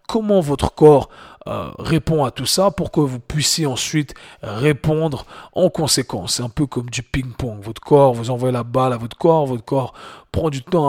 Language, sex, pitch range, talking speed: French, male, 120-155 Hz, 200 wpm